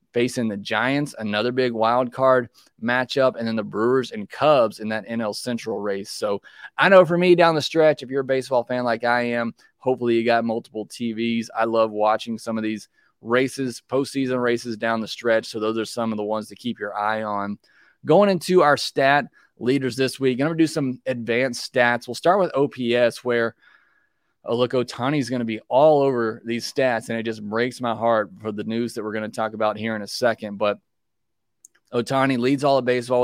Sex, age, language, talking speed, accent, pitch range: male, 20-39, English, 210 wpm, American, 110-130 Hz